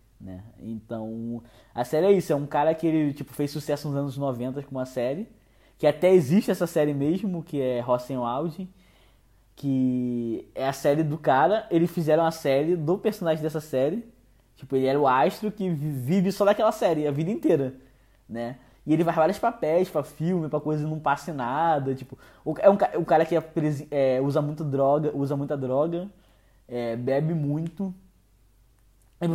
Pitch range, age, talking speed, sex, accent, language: 125-165 Hz, 10-29, 185 wpm, male, Brazilian, Portuguese